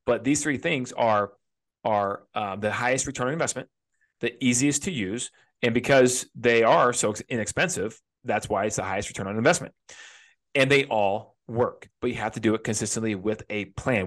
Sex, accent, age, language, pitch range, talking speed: male, American, 30-49, English, 115-160 Hz, 190 wpm